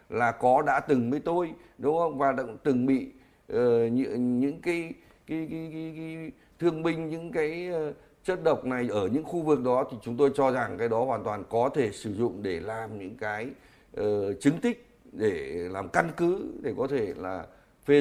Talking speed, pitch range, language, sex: 205 wpm, 125-160 Hz, Vietnamese, male